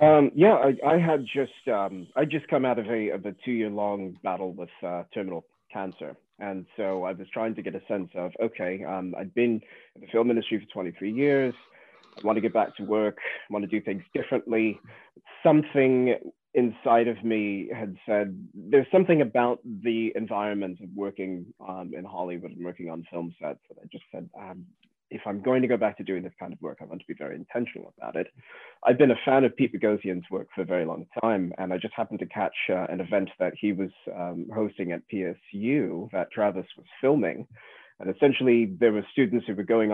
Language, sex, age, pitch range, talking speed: English, male, 20-39, 95-120 Hz, 215 wpm